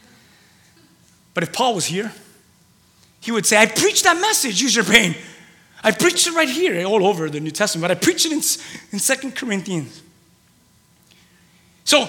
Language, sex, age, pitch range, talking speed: English, male, 30-49, 160-210 Hz, 165 wpm